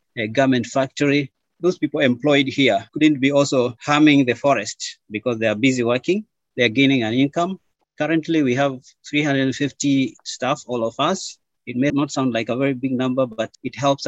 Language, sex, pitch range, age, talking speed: English, male, 120-150 Hz, 30-49, 185 wpm